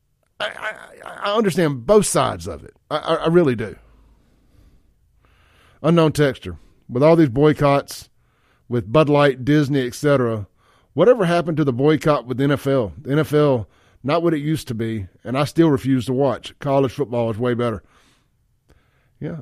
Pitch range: 110-155 Hz